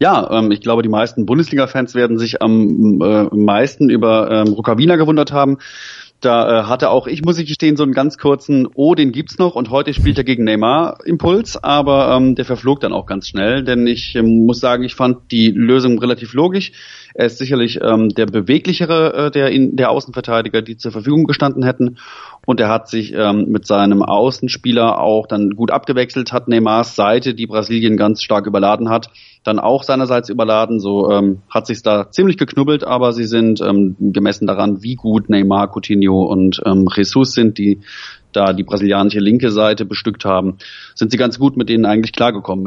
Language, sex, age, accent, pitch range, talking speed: German, male, 30-49, German, 105-130 Hz, 185 wpm